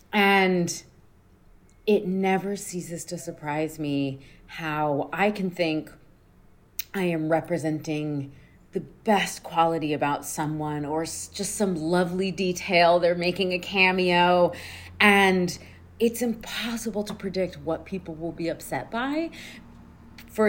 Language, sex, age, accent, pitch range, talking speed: English, female, 30-49, American, 160-210 Hz, 115 wpm